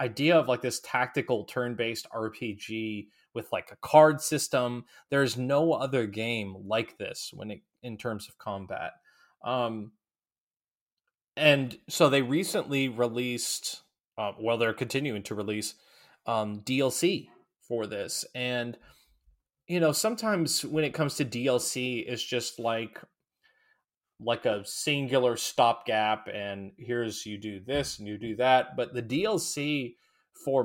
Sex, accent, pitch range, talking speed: male, American, 110-140 Hz, 135 wpm